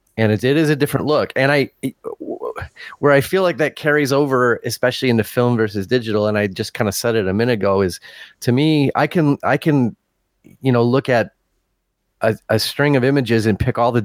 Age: 30-49